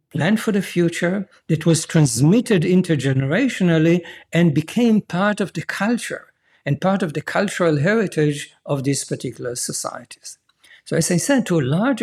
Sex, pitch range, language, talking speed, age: male, 150-175 Hz, English, 155 wpm, 60-79